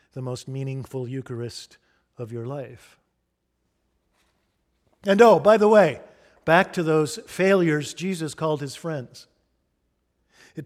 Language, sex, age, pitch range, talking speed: English, male, 50-69, 140-175 Hz, 120 wpm